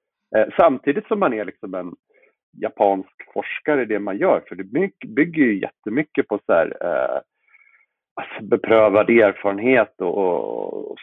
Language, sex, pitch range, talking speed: Swedish, male, 100-140 Hz, 145 wpm